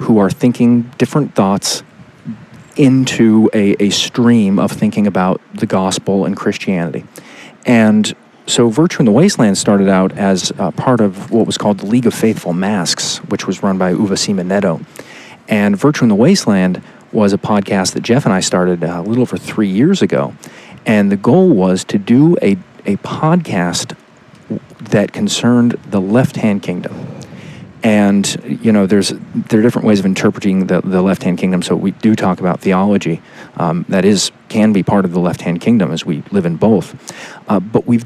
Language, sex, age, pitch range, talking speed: English, male, 40-59, 95-125 Hz, 180 wpm